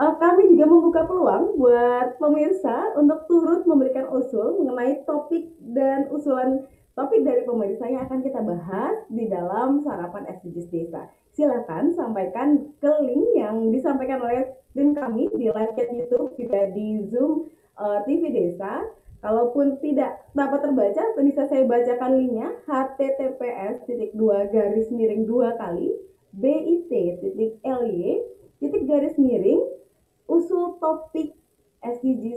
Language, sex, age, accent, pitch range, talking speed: Indonesian, female, 20-39, native, 225-295 Hz, 125 wpm